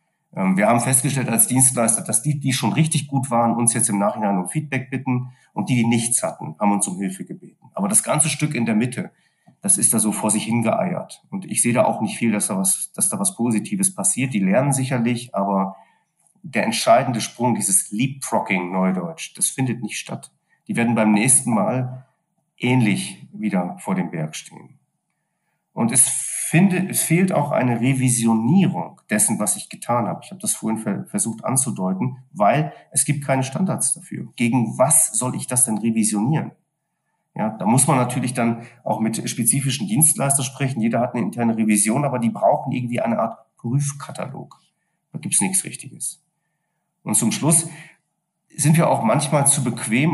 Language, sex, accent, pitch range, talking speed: German, male, German, 115-160 Hz, 185 wpm